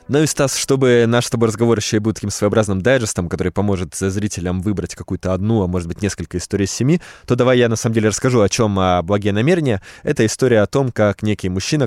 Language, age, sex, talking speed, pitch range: Russian, 20-39, male, 230 wpm, 90-115 Hz